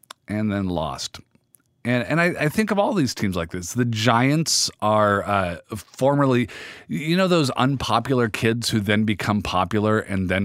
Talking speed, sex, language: 170 wpm, male, English